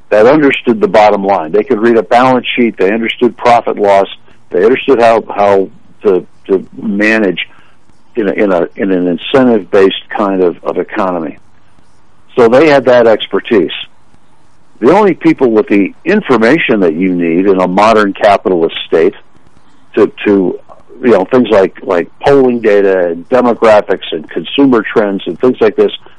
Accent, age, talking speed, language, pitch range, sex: American, 60-79, 165 wpm, English, 105-130 Hz, male